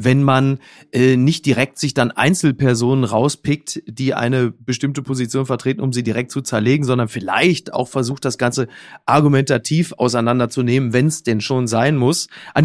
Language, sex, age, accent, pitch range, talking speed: German, male, 30-49, German, 130-175 Hz, 160 wpm